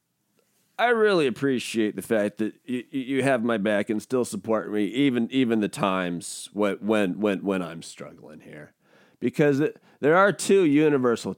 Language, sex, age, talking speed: English, male, 40-59, 165 wpm